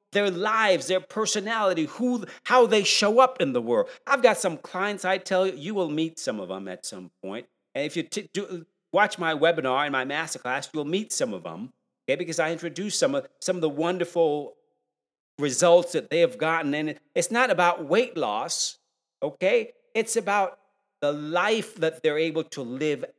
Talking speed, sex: 195 wpm, male